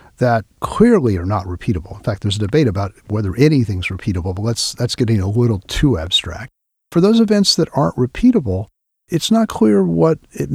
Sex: male